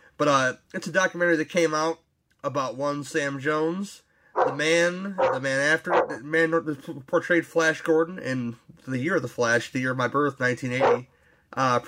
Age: 30-49